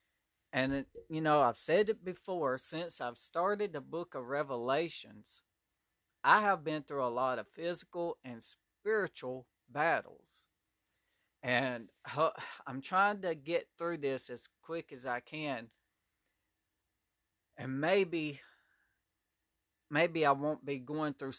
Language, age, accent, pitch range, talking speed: English, 40-59, American, 120-160 Hz, 130 wpm